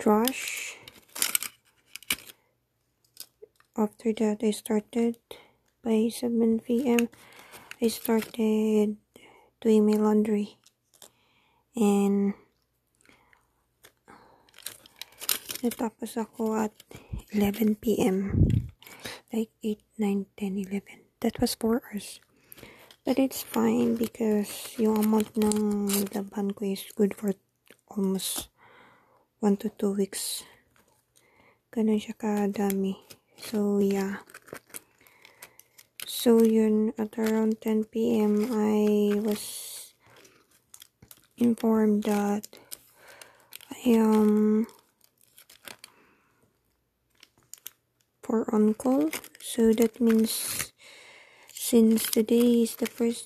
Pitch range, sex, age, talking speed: 210-235 Hz, female, 20-39, 80 wpm